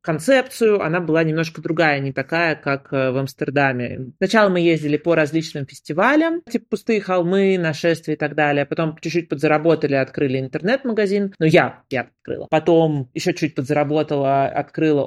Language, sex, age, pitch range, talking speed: Russian, male, 30-49, 150-190 Hz, 145 wpm